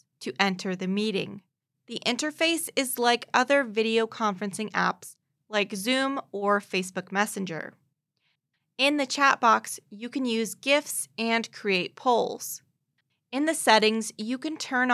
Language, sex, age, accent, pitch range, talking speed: English, female, 20-39, American, 195-255 Hz, 135 wpm